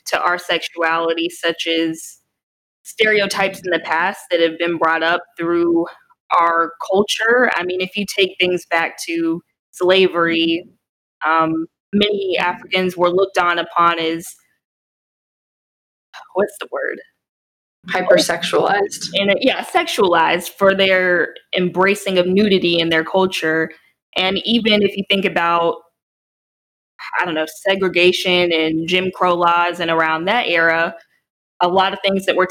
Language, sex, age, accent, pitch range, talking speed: English, female, 20-39, American, 165-195 Hz, 135 wpm